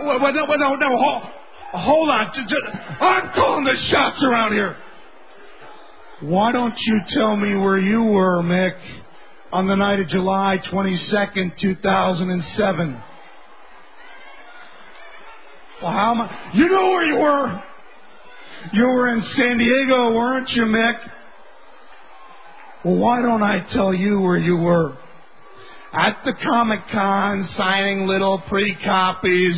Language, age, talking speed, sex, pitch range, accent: English, 40-59, 130 wpm, male, 190-250 Hz, American